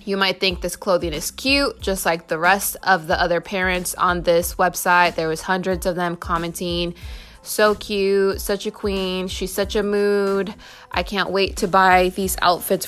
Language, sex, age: English, female, 20-39